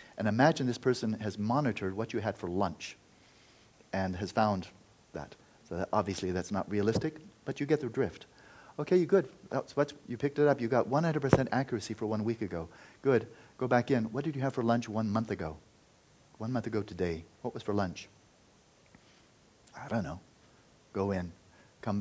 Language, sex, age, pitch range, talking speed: English, male, 40-59, 100-130 Hz, 190 wpm